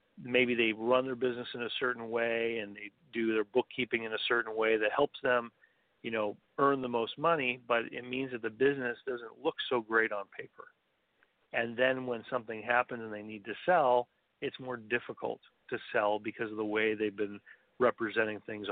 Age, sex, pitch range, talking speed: 40-59, male, 110-125 Hz, 200 wpm